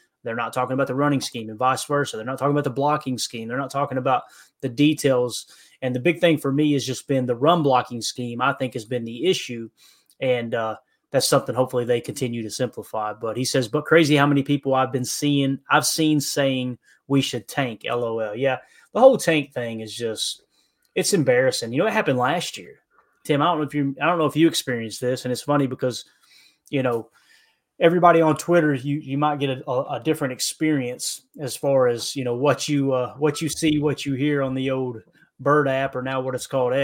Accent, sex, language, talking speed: American, male, English, 225 wpm